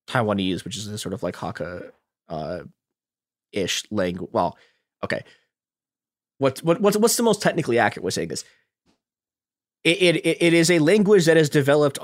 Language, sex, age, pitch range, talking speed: English, male, 20-39, 110-165 Hz, 170 wpm